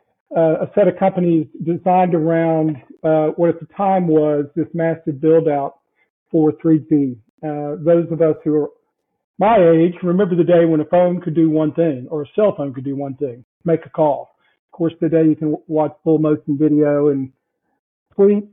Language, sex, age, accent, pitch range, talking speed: English, male, 50-69, American, 150-165 Hz, 195 wpm